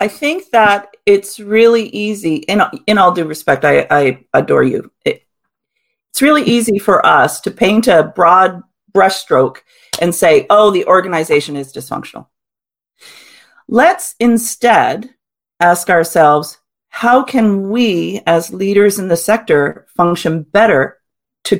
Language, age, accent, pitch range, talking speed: English, 40-59, American, 165-225 Hz, 135 wpm